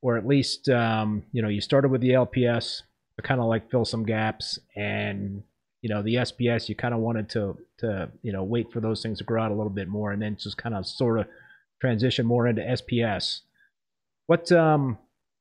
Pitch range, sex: 105-130 Hz, male